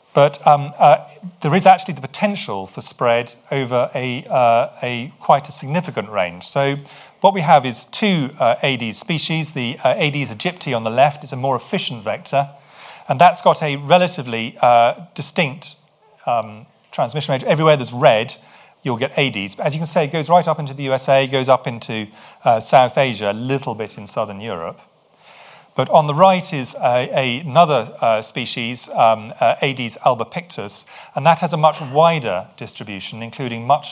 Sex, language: male, English